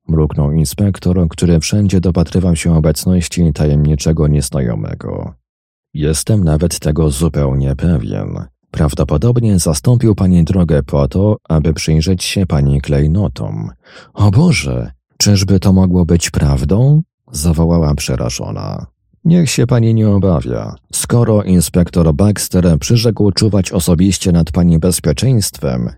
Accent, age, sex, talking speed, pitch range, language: native, 40-59, male, 110 wpm, 75-100 Hz, Polish